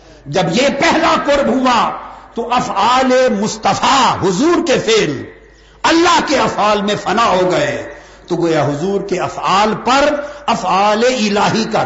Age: 60-79